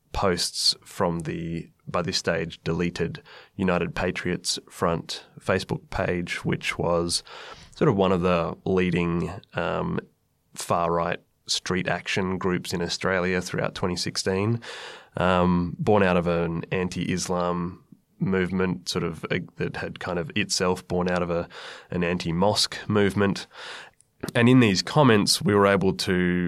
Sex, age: male, 20-39